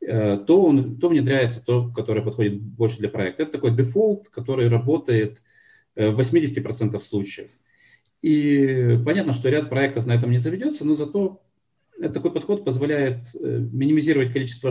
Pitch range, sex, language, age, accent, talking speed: 115-150 Hz, male, Ukrainian, 40-59, native, 135 wpm